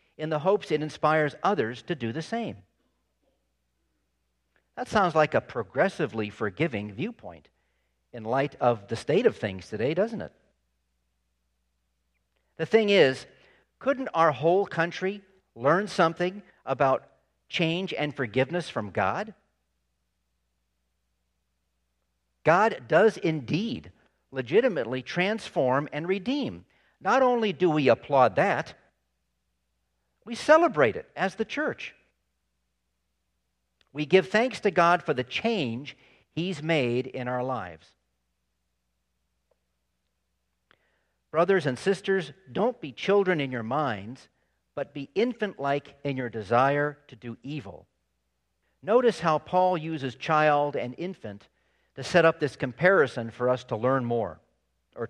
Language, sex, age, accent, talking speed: English, male, 50-69, American, 120 wpm